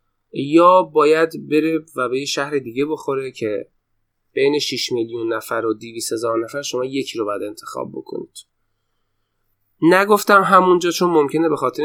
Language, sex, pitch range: Persian, male, 115-165 Hz